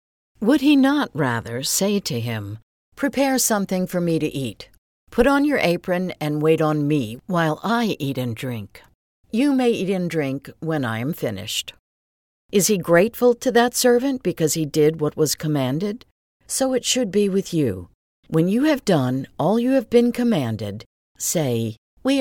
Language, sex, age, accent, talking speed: English, female, 60-79, American, 175 wpm